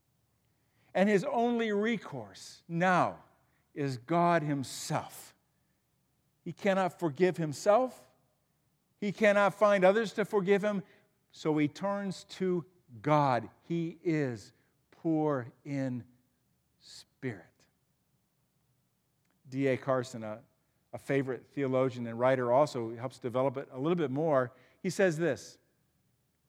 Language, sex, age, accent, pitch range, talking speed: English, male, 50-69, American, 135-195 Hz, 110 wpm